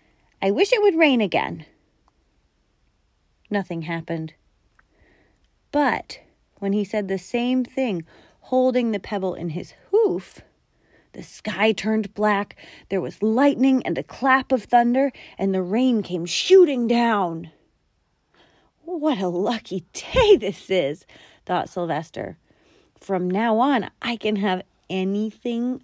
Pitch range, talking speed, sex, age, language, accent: 180-255 Hz, 125 wpm, female, 30-49, English, American